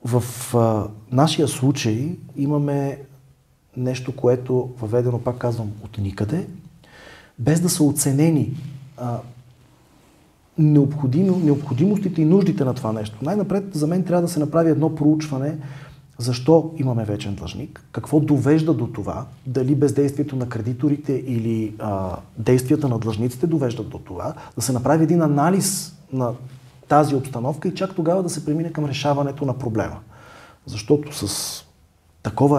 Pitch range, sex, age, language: 115-150 Hz, male, 40-59, Bulgarian